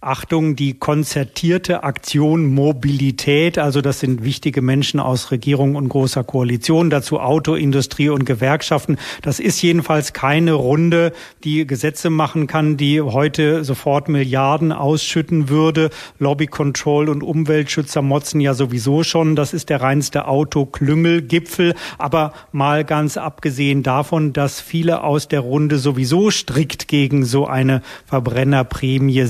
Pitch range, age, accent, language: 135-155 Hz, 40-59, German, German